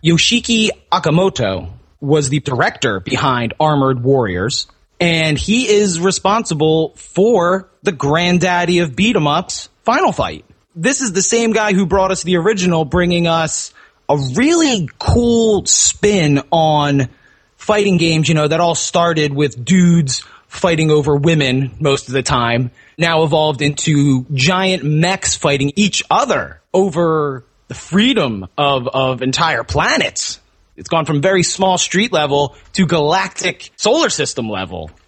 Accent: American